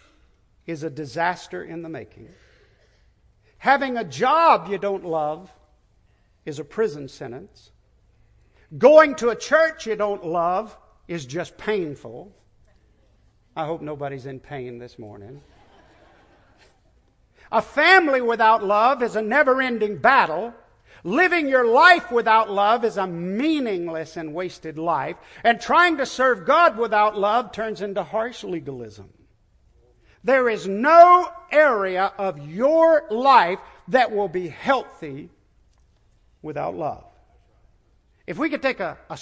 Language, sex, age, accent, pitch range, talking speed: English, male, 50-69, American, 165-270 Hz, 125 wpm